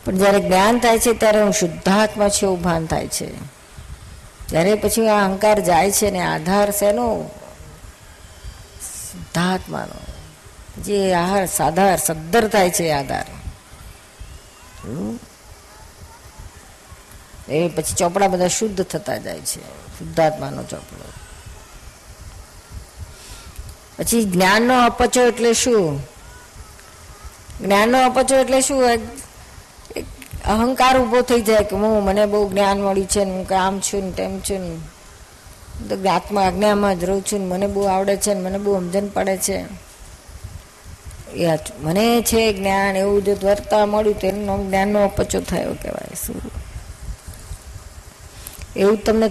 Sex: female